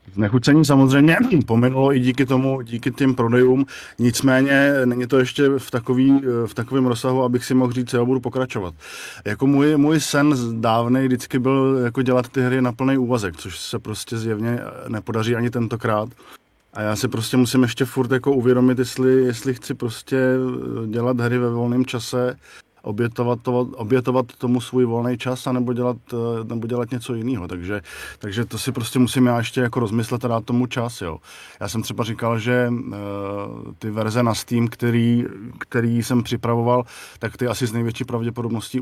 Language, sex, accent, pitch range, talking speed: Czech, male, native, 115-130 Hz, 165 wpm